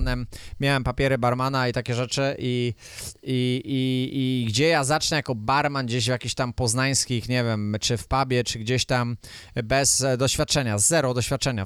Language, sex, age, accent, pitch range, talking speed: Polish, male, 20-39, native, 115-145 Hz, 160 wpm